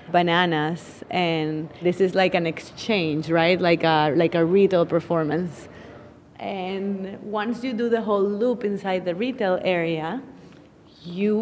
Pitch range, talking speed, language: 175-205 Hz, 135 wpm, English